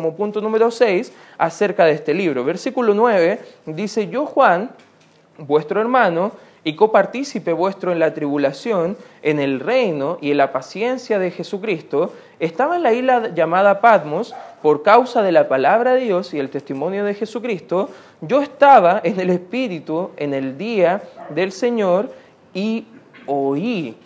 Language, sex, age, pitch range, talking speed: Spanish, male, 20-39, 150-220 Hz, 150 wpm